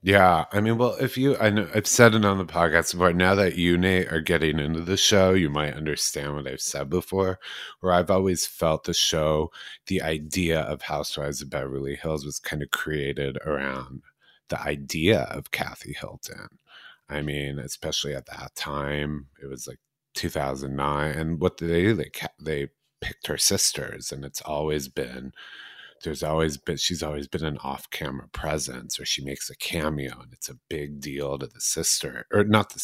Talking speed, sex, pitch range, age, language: 190 wpm, male, 75-95 Hz, 30-49, English